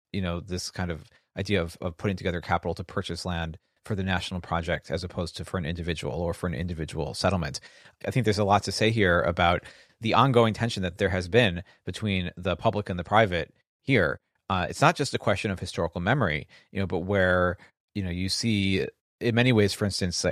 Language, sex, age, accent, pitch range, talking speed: English, male, 30-49, American, 90-105 Hz, 220 wpm